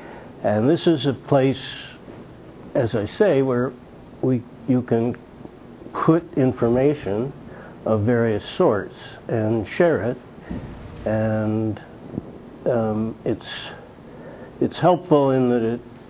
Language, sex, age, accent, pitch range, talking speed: English, male, 60-79, American, 110-135 Hz, 105 wpm